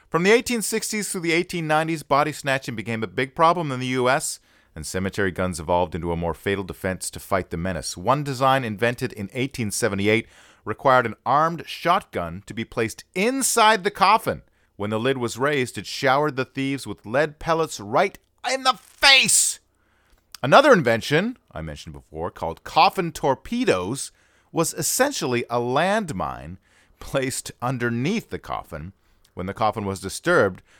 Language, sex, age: English, male, 40-59